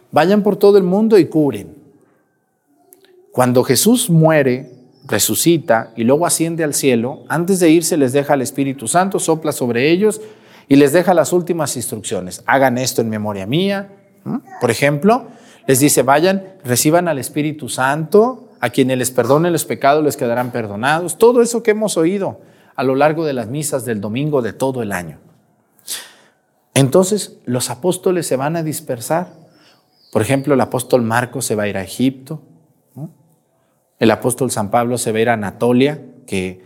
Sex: male